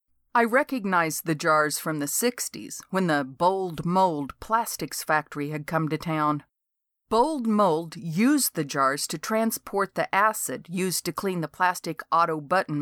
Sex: female